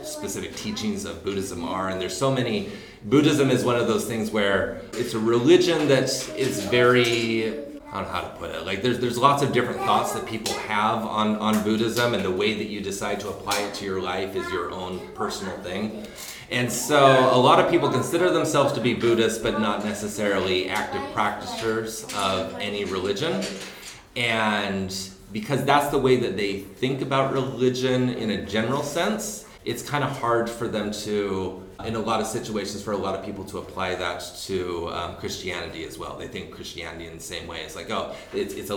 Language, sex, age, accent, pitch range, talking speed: English, male, 30-49, American, 100-125 Hz, 200 wpm